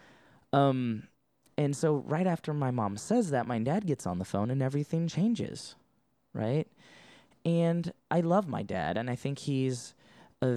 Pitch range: 115-155 Hz